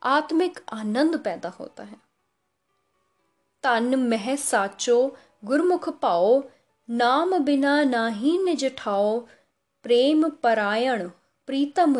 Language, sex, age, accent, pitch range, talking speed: Hindi, female, 10-29, native, 215-300 Hz, 85 wpm